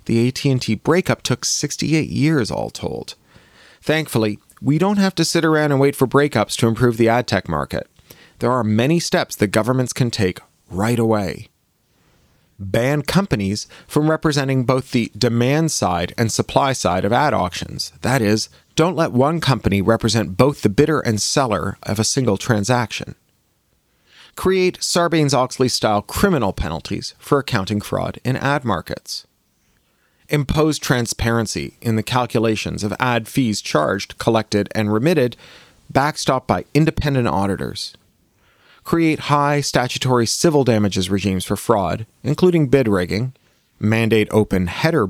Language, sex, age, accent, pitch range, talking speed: English, male, 40-59, American, 105-145 Hz, 140 wpm